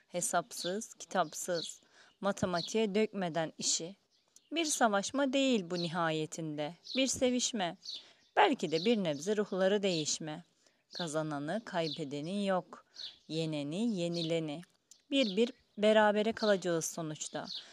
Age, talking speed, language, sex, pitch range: 30-49, 95 wpm, Turkish, female, 170-220 Hz